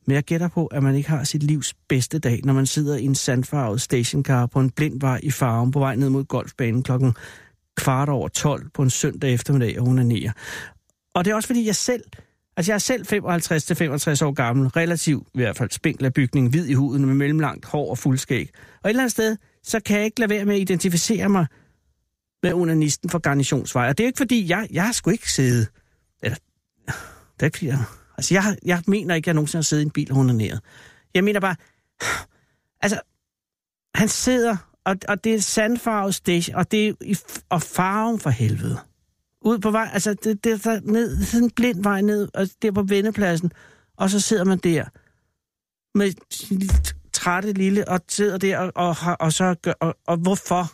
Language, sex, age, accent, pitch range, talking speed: Danish, male, 60-79, native, 135-200 Hz, 200 wpm